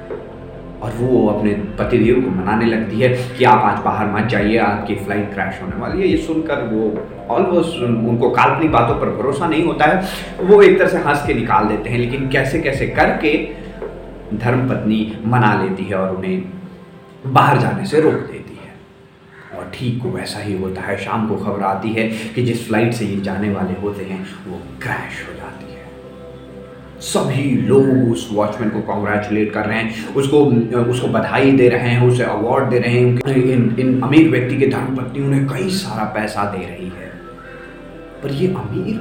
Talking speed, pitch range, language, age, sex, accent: 185 wpm, 105-135 Hz, Hindi, 30-49, male, native